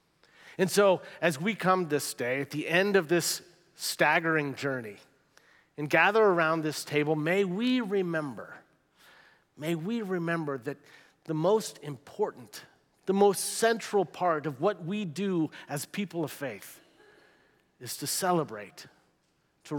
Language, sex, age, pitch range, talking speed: English, male, 40-59, 145-185 Hz, 135 wpm